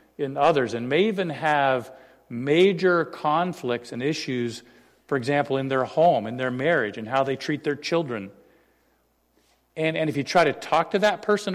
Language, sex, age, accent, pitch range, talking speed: English, male, 50-69, American, 125-150 Hz, 175 wpm